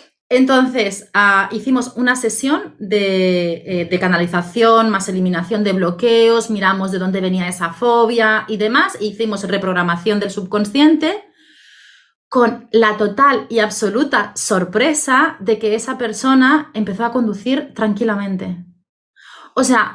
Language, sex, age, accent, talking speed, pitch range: Spanish, female, 30-49, Spanish, 125 wpm, 210-260 Hz